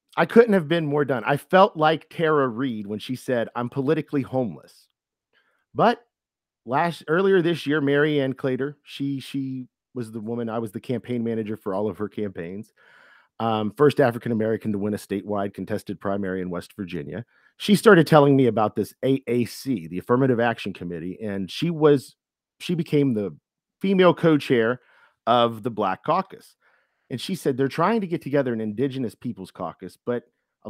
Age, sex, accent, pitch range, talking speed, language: 40-59, male, American, 110-160 Hz, 175 wpm, English